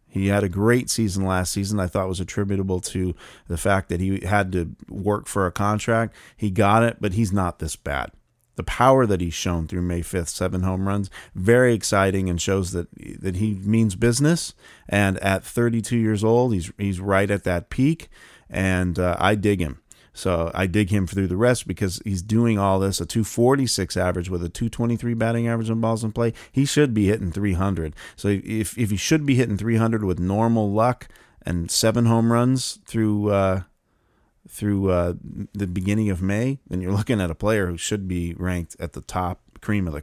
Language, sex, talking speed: English, male, 200 wpm